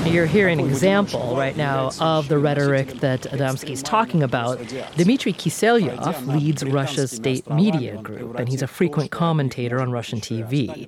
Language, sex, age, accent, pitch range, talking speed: English, female, 40-59, American, 140-200 Hz, 160 wpm